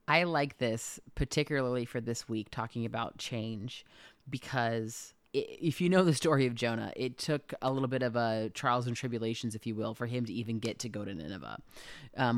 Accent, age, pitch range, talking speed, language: American, 30-49, 115-145 Hz, 200 wpm, English